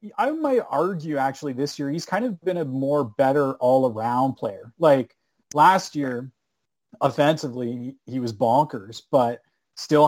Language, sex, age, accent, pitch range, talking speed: English, male, 30-49, American, 125-150 Hz, 155 wpm